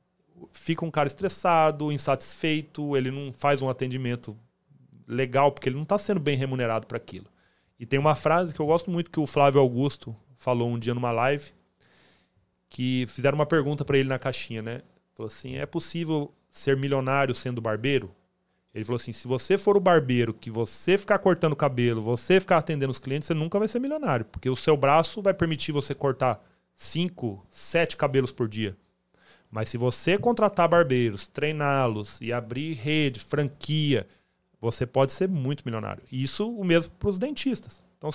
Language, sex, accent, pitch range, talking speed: Portuguese, male, Brazilian, 125-170 Hz, 175 wpm